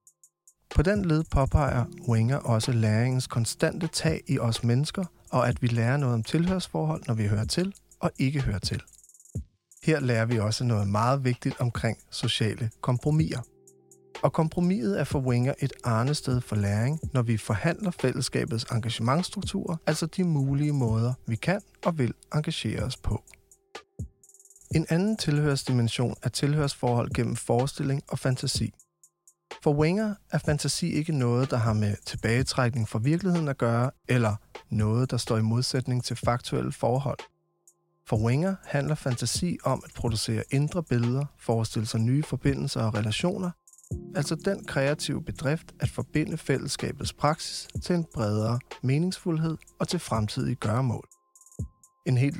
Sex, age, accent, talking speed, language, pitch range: male, 30-49, native, 145 wpm, Danish, 120-160 Hz